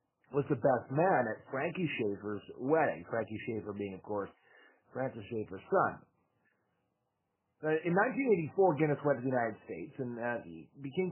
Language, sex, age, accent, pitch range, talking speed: English, male, 40-59, American, 115-155 Hz, 150 wpm